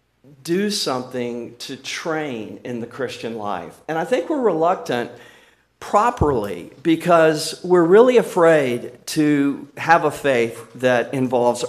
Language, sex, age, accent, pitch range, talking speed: English, male, 50-69, American, 125-160 Hz, 125 wpm